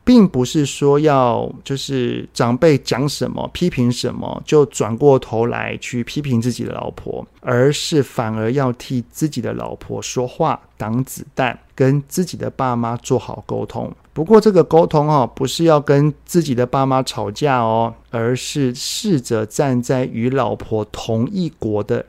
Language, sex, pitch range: Chinese, male, 115-150 Hz